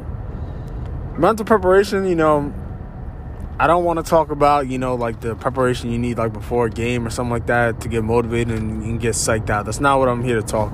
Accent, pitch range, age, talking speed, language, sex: American, 105-125 Hz, 20-39, 225 wpm, English, male